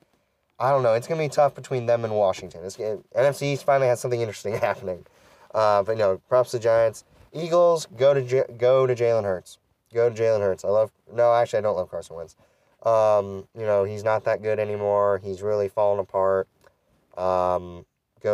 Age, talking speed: 20-39, 205 wpm